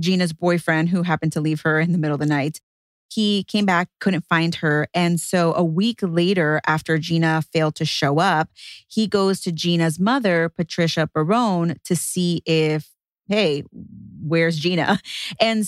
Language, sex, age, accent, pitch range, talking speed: English, female, 30-49, American, 155-190 Hz, 170 wpm